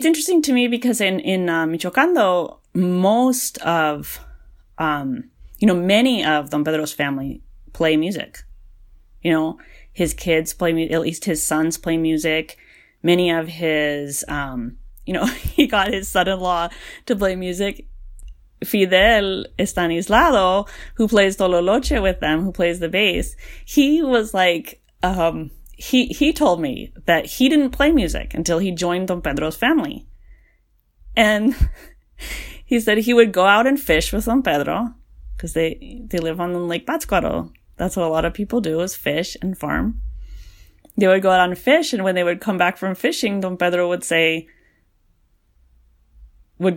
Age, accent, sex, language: 30-49, American, female, English